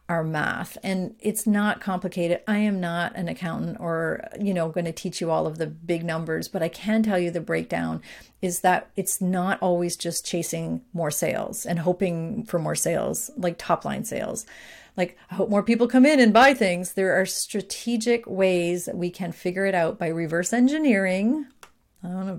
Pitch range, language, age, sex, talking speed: 175-215 Hz, English, 40-59, female, 195 wpm